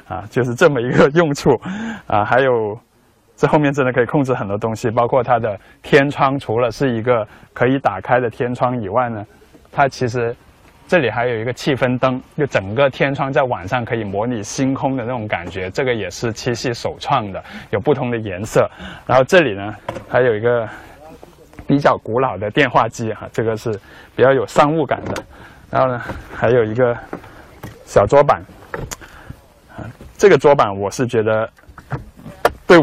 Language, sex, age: Chinese, male, 20-39